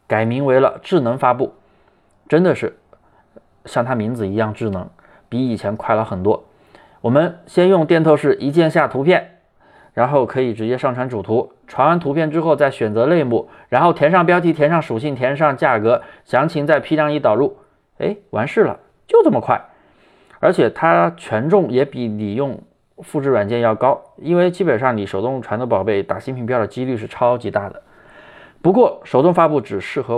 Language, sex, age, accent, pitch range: Chinese, male, 20-39, native, 115-170 Hz